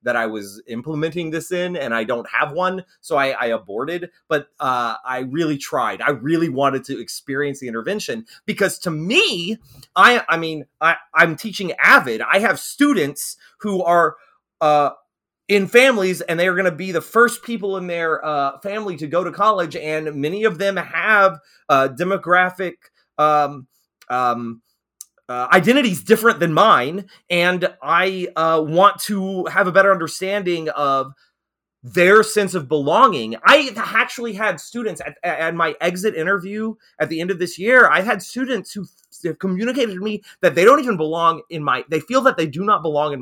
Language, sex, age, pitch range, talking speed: English, male, 30-49, 155-205 Hz, 175 wpm